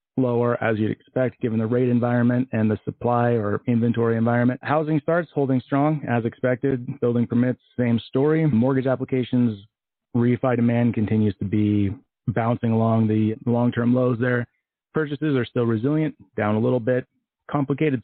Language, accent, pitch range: English, American, 110-130 Hz